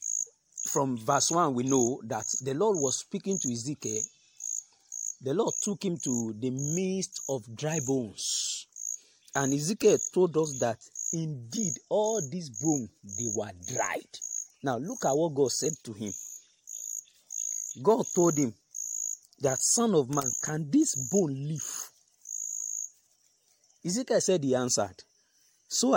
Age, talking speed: 50-69, 135 wpm